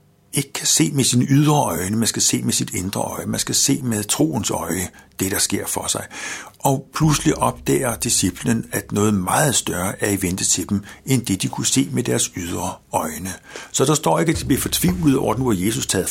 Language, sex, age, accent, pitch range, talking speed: Danish, male, 60-79, native, 100-145 Hz, 225 wpm